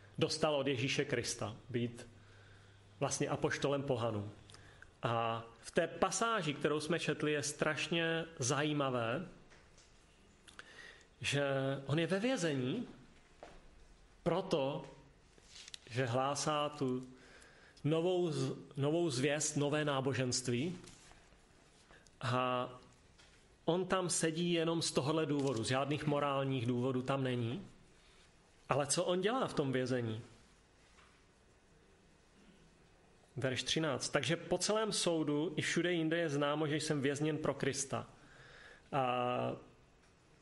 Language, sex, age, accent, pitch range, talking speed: Czech, male, 30-49, native, 125-150 Hz, 105 wpm